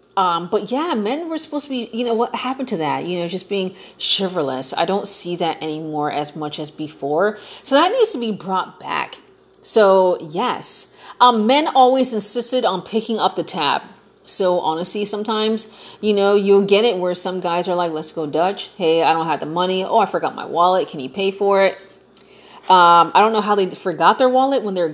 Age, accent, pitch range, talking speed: 30-49, American, 175-230 Hz, 215 wpm